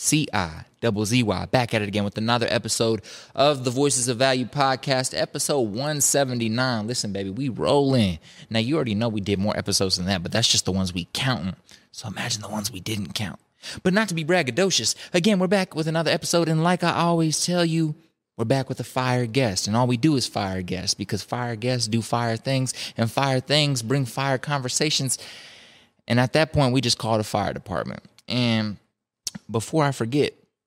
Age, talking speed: 20-39, 200 wpm